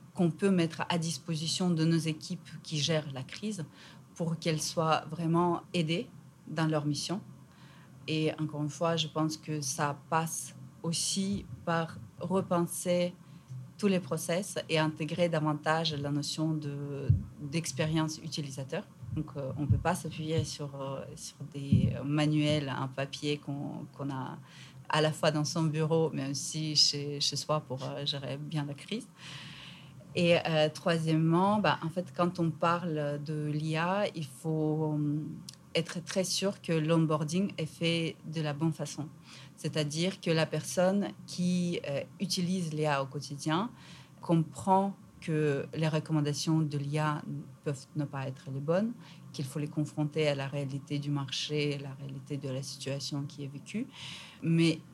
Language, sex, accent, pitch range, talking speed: French, female, French, 145-170 Hz, 155 wpm